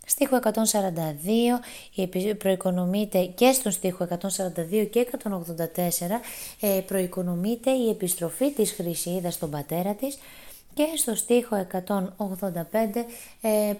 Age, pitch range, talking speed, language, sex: 20-39, 180-225 Hz, 90 wpm, Greek, female